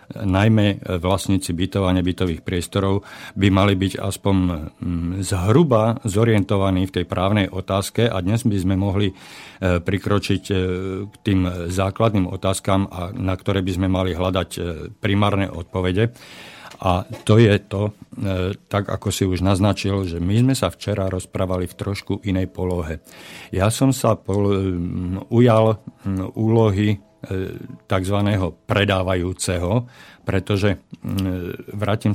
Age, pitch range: 50-69, 95-105 Hz